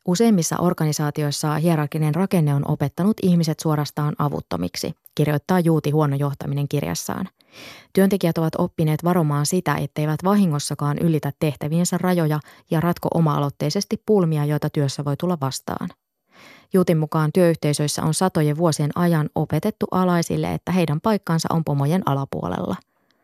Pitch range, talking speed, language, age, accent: 150-180 Hz, 120 wpm, Finnish, 20-39, native